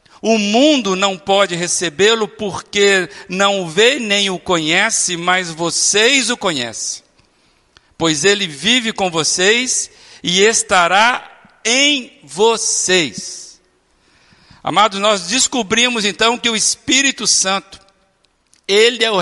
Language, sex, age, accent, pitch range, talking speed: Portuguese, male, 60-79, Brazilian, 170-230 Hz, 110 wpm